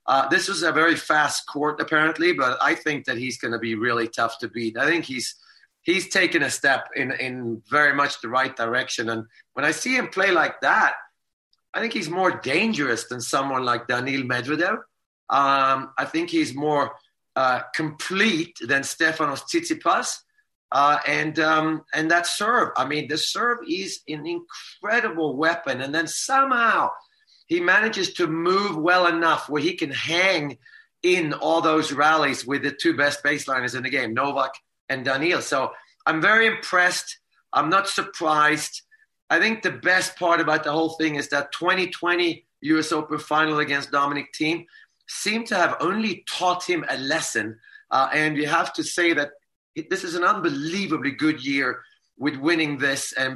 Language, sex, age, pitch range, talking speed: English, male, 40-59, 140-180 Hz, 175 wpm